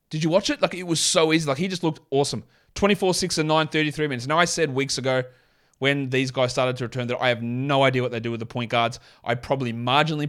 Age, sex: 20-39, male